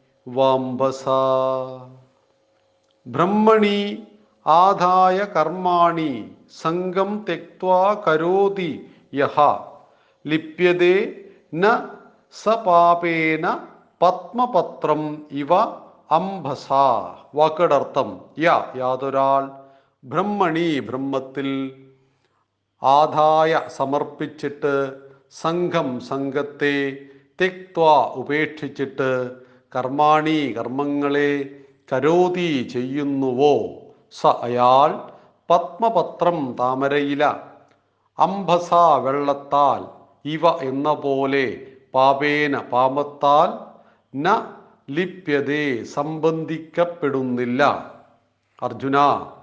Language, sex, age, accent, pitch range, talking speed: Malayalam, male, 50-69, native, 135-180 Hz, 40 wpm